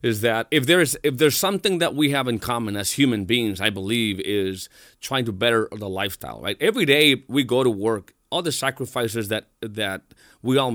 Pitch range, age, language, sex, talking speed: 115-150 Hz, 30-49, English, male, 205 wpm